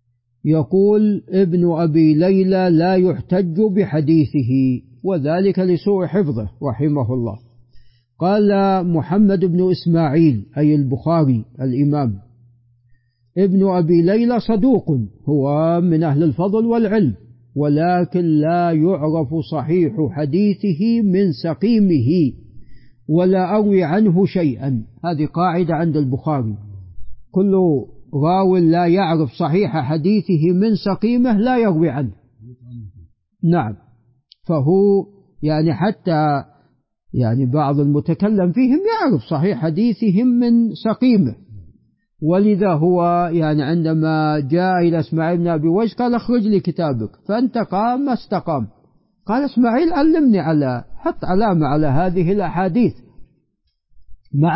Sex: male